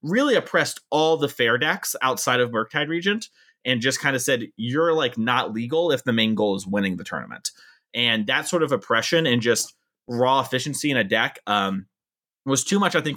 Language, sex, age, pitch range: English, male, 30-49, 120-160 Hz